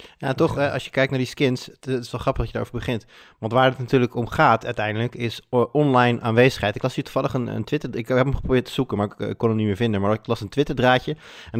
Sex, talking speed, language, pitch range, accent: male, 280 wpm, Dutch, 105-125 Hz, Dutch